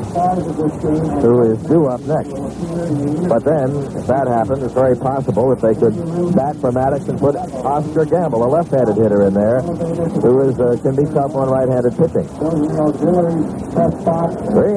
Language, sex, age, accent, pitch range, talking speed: English, male, 60-79, American, 125-160 Hz, 155 wpm